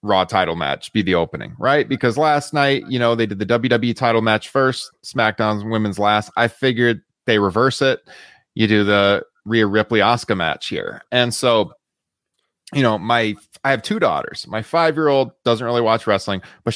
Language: English